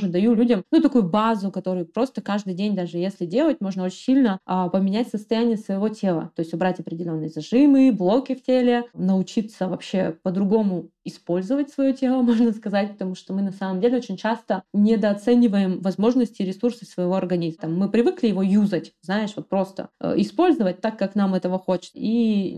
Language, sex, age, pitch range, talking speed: Russian, female, 20-39, 185-235 Hz, 165 wpm